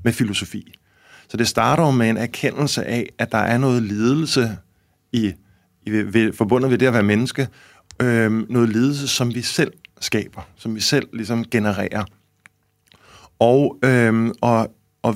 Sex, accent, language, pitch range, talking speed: male, native, Danish, 105-130 Hz, 160 wpm